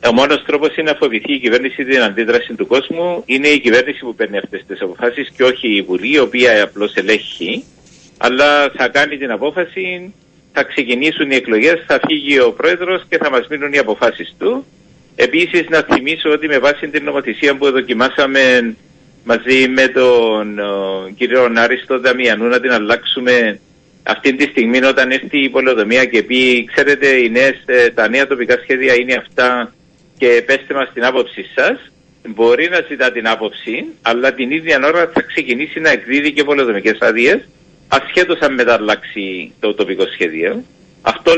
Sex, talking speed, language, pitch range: male, 160 wpm, Greek, 120-150 Hz